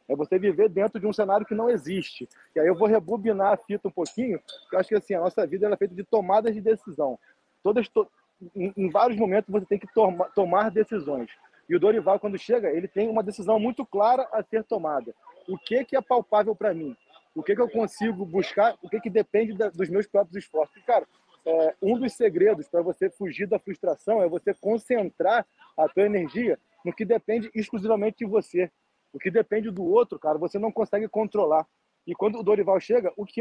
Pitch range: 185-225 Hz